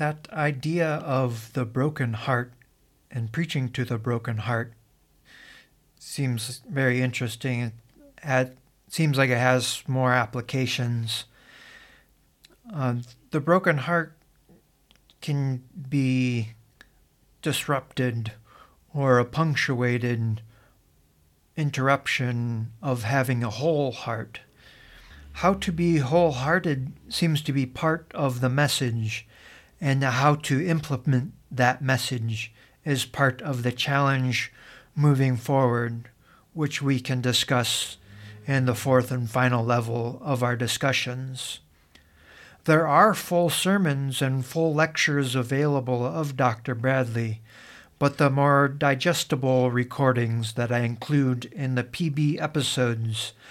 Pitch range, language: 120-145 Hz, English